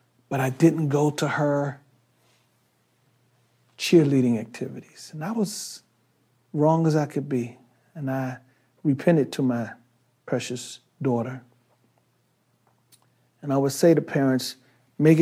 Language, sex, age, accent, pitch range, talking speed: English, male, 50-69, American, 125-155 Hz, 120 wpm